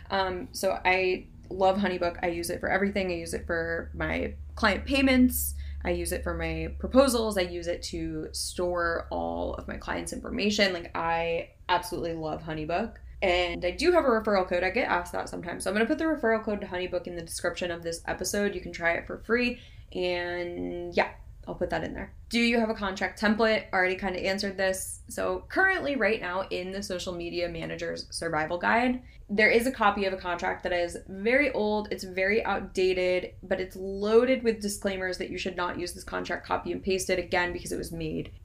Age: 20-39